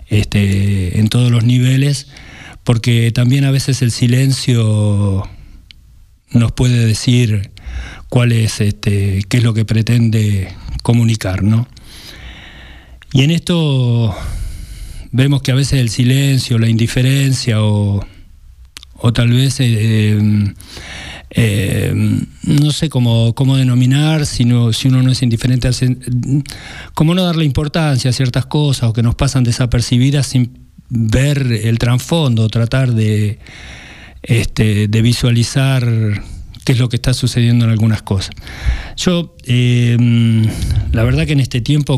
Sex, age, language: male, 50-69, Spanish